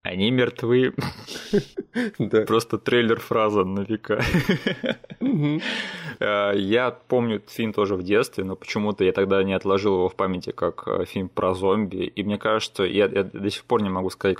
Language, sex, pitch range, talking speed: Russian, male, 90-110 Hz, 150 wpm